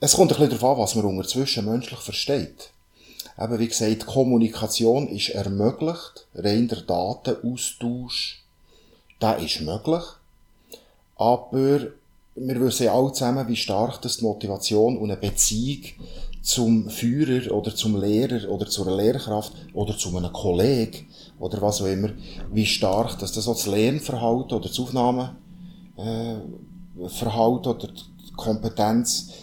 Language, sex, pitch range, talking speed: German, male, 105-125 Hz, 125 wpm